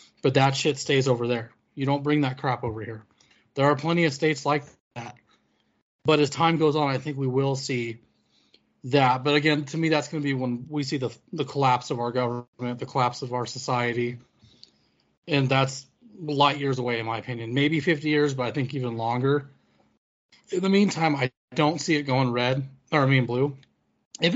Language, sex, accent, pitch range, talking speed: English, male, American, 120-150 Hz, 205 wpm